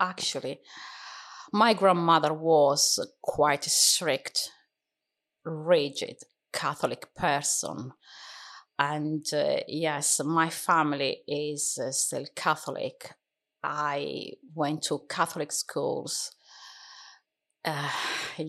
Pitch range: 150-175 Hz